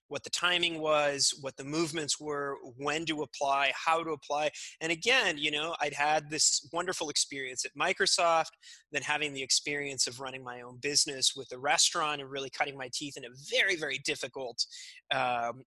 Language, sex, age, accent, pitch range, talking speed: English, male, 30-49, American, 130-160 Hz, 185 wpm